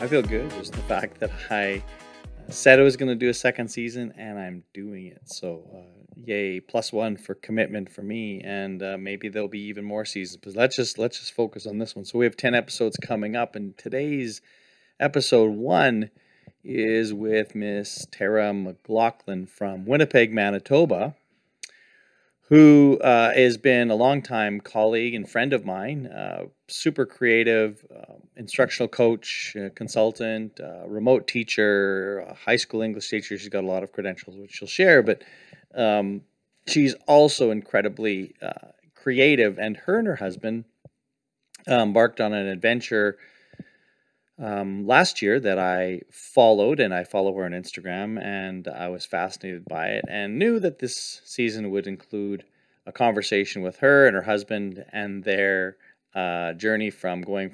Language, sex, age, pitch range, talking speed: English, male, 30-49, 95-115 Hz, 165 wpm